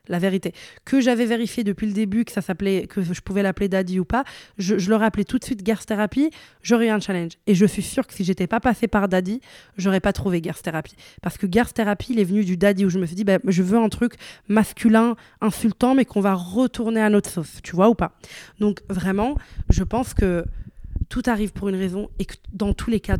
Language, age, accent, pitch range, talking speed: French, 20-39, French, 180-210 Hz, 240 wpm